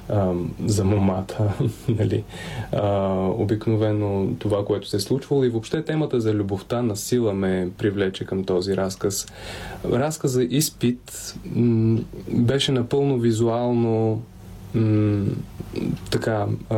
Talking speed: 100 wpm